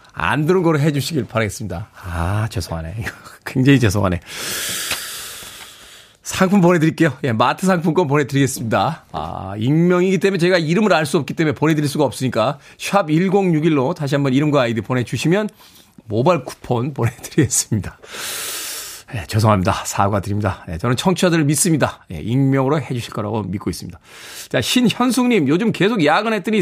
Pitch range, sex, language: 125-175 Hz, male, Korean